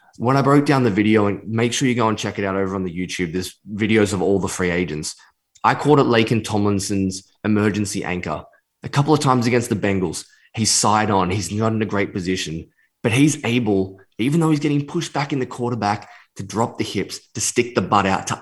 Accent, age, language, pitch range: Australian, 20-39, English, 95-120 Hz